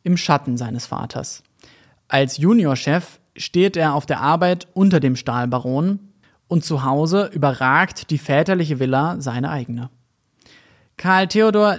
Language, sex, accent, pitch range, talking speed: German, male, German, 140-190 Hz, 125 wpm